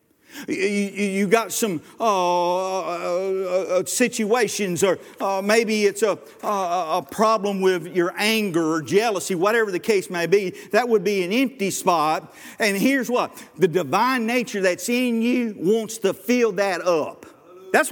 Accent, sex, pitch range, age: American, male, 180-245 Hz, 50-69